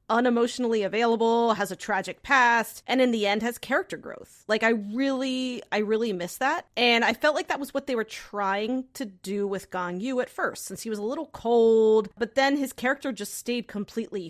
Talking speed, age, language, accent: 210 wpm, 30-49, English, American